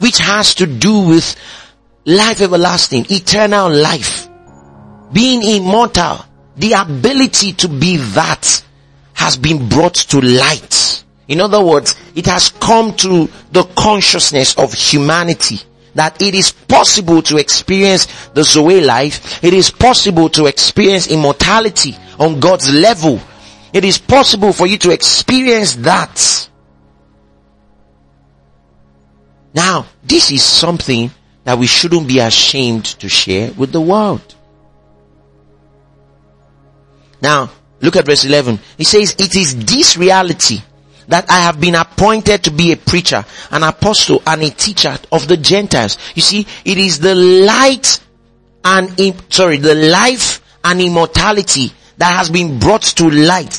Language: English